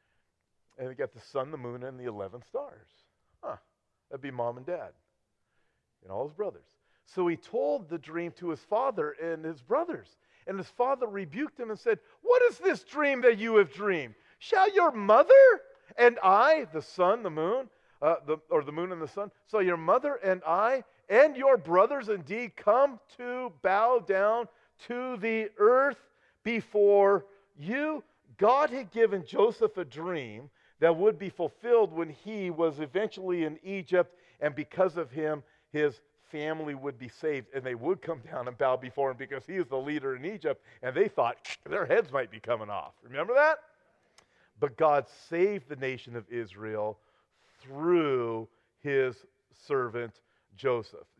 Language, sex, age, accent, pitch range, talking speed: English, male, 50-69, American, 135-225 Hz, 170 wpm